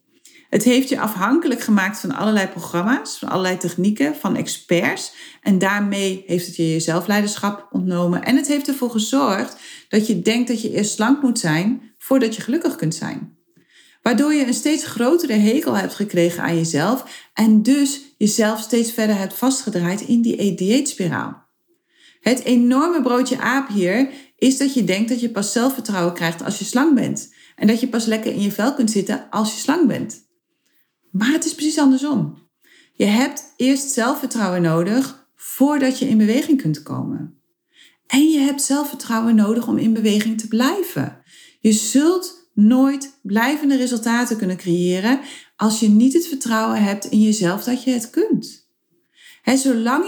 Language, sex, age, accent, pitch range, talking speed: Dutch, female, 40-59, Dutch, 210-280 Hz, 165 wpm